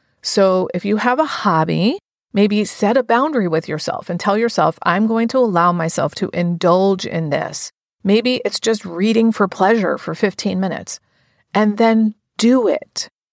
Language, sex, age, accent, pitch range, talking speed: English, female, 40-59, American, 175-215 Hz, 165 wpm